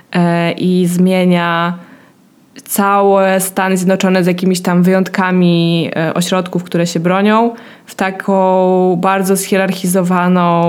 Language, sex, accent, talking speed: Polish, female, native, 95 wpm